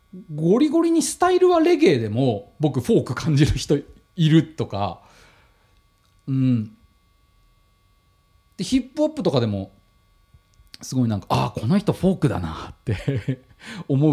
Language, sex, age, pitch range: Japanese, male, 40-59, 105-150 Hz